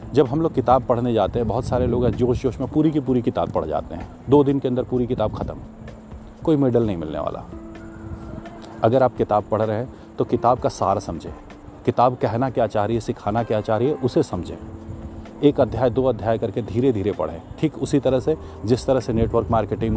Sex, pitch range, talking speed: male, 100-130 Hz, 220 wpm